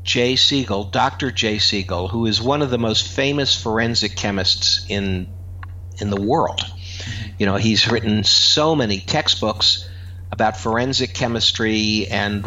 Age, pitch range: 60-79, 90-115 Hz